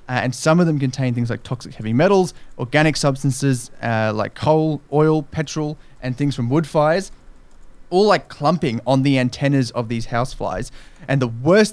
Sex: male